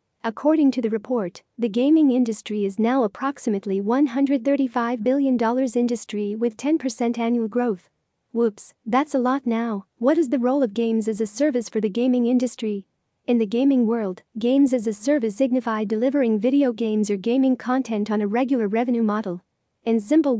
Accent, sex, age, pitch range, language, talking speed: American, female, 40-59, 220-260 Hz, English, 170 wpm